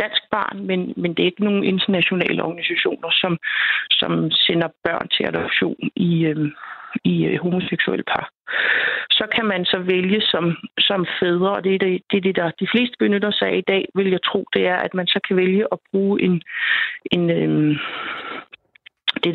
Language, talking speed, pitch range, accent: Danish, 185 wpm, 175-210 Hz, native